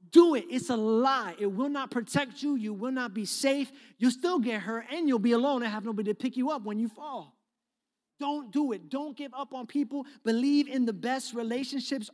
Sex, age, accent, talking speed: male, 30-49, American, 225 wpm